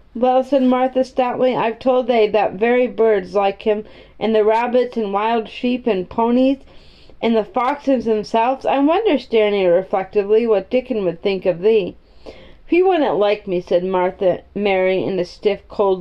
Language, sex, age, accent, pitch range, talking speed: English, female, 40-59, American, 200-255 Hz, 170 wpm